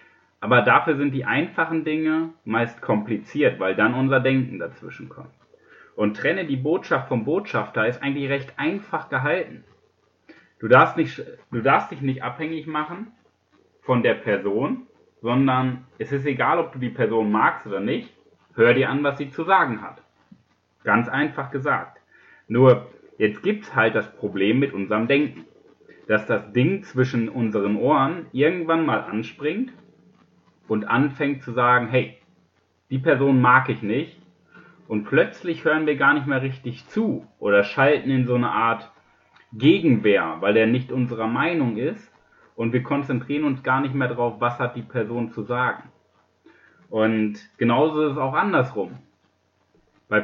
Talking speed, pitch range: 155 wpm, 120-155 Hz